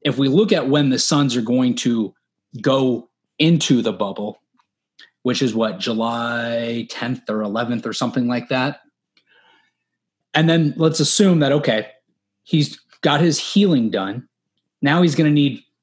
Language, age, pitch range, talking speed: English, 20-39, 115-145 Hz, 155 wpm